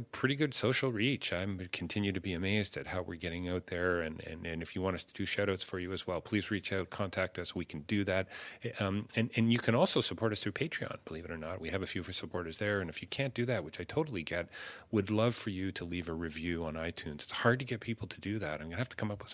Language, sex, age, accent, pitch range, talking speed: English, male, 40-59, American, 85-105 Hz, 300 wpm